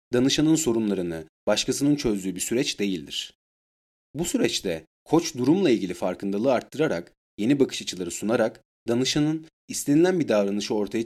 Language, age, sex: Turkish, 30-49, male